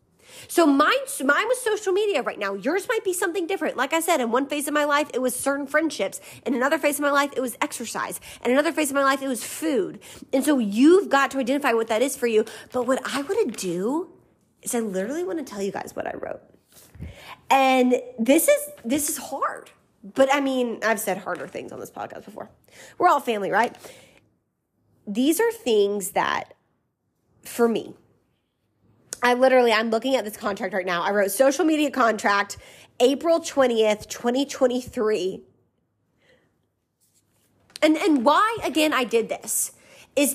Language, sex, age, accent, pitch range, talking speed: English, female, 20-39, American, 230-300 Hz, 185 wpm